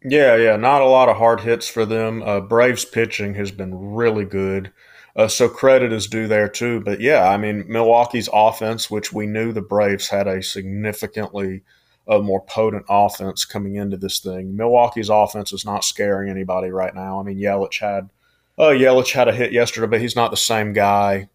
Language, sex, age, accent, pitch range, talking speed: English, male, 30-49, American, 95-115 Hz, 195 wpm